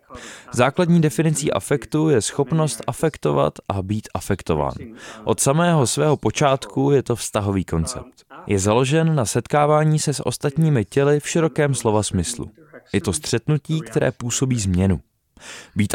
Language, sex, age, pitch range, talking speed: Czech, male, 20-39, 105-150 Hz, 135 wpm